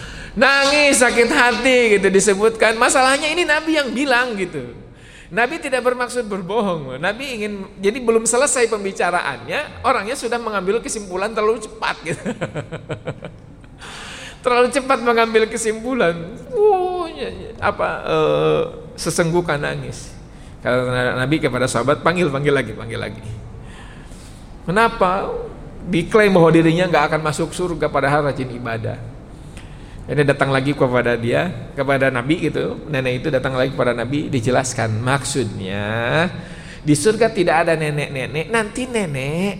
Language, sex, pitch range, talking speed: Indonesian, male, 135-215 Hz, 120 wpm